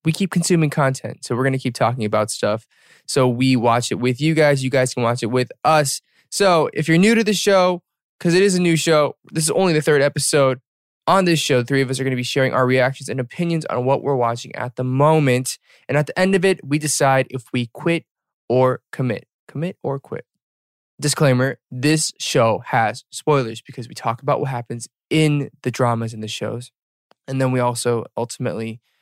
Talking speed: 220 wpm